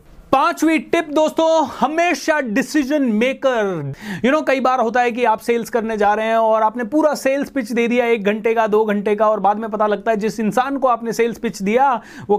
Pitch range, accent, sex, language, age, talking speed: 175-235 Hz, native, male, Hindi, 30-49, 225 wpm